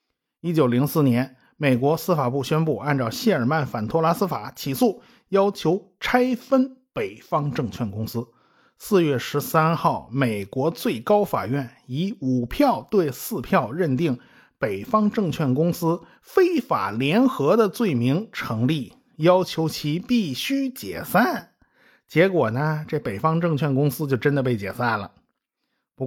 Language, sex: Chinese, male